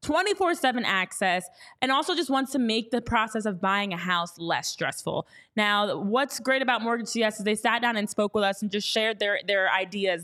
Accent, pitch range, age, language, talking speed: American, 205-260 Hz, 20-39, English, 205 wpm